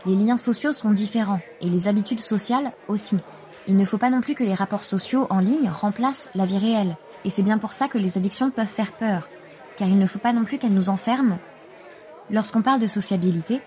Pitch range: 200-255 Hz